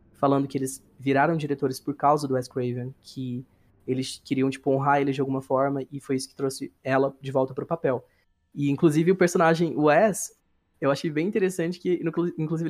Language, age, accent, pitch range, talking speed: Portuguese, 20-39, Brazilian, 135-170 Hz, 195 wpm